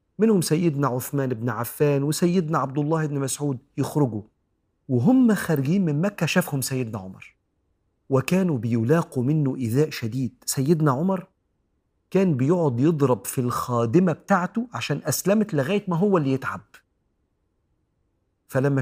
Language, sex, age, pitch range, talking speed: Arabic, male, 40-59, 115-150 Hz, 125 wpm